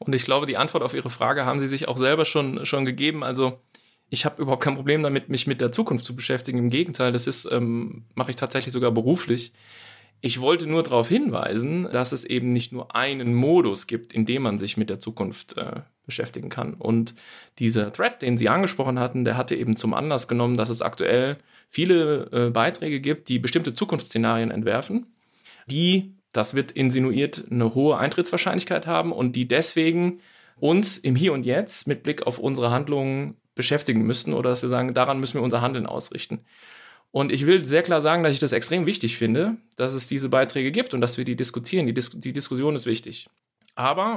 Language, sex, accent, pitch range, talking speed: German, male, German, 120-150 Hz, 200 wpm